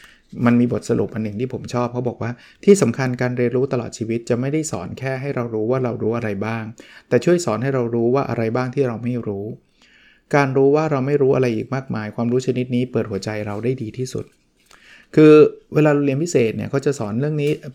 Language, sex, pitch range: Thai, male, 115-145 Hz